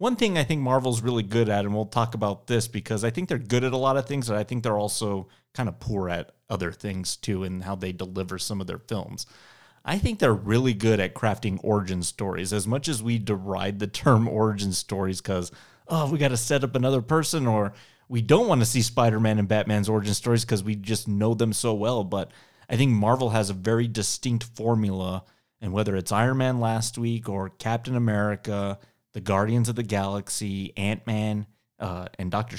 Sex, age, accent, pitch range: male, 30-49, American, 100-120 Hz